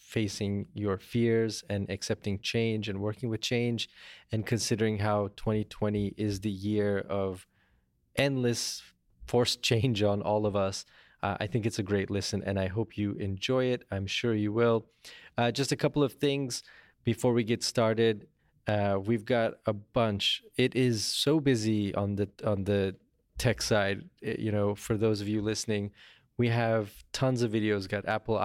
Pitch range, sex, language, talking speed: 100-115 Hz, male, English, 170 wpm